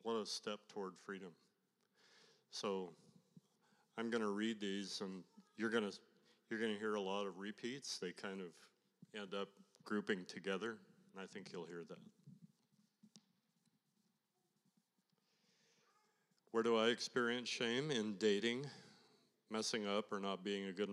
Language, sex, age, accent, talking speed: English, male, 50-69, American, 135 wpm